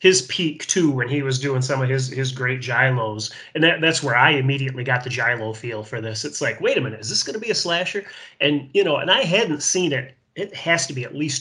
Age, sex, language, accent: 30-49, male, English, American